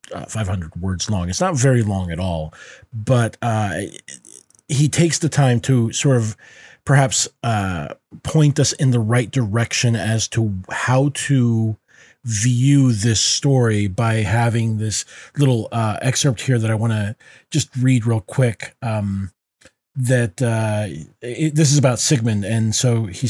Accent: American